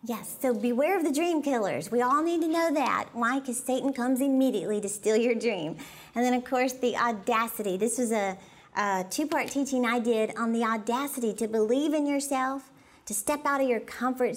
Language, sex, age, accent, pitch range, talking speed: English, female, 40-59, American, 210-270 Hz, 205 wpm